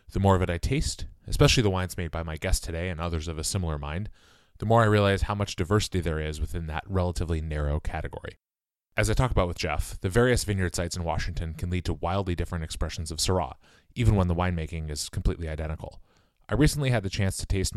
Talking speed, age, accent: 230 wpm, 30-49, American